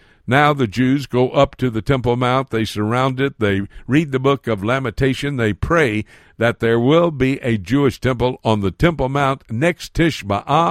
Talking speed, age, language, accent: 185 wpm, 60-79, English, American